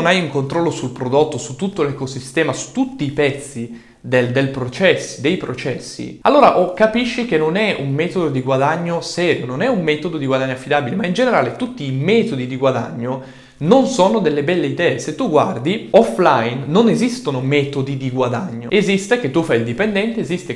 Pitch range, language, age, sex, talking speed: 130-185 Hz, Italian, 20-39, male, 190 wpm